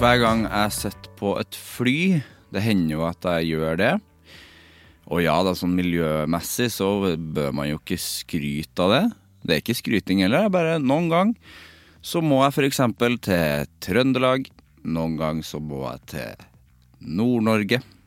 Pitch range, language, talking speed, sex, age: 80-120 Hz, English, 165 wpm, male, 30-49